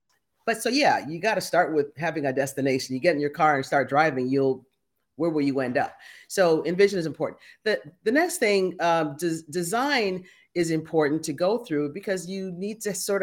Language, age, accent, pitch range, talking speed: English, 40-59, American, 155-200 Hz, 205 wpm